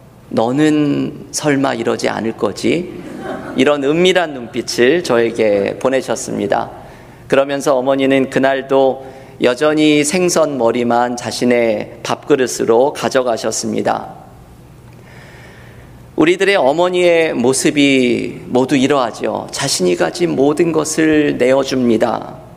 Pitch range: 120-150 Hz